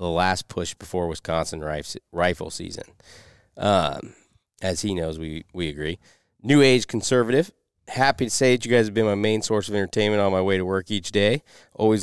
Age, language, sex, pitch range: 30-49, English, male, 85-110 Hz